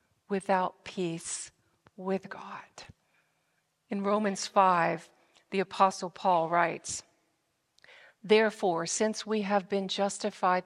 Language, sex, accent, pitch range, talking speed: English, female, American, 175-210 Hz, 95 wpm